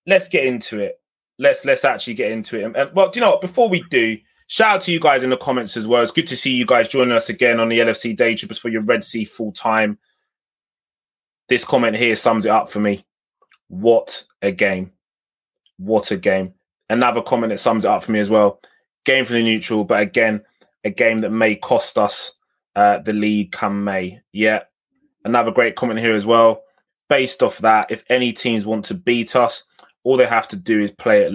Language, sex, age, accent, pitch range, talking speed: English, male, 20-39, British, 105-175 Hz, 220 wpm